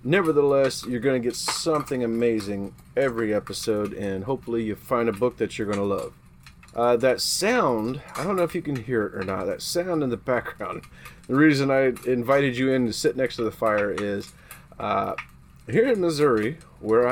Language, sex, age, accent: English, male, 30-49, American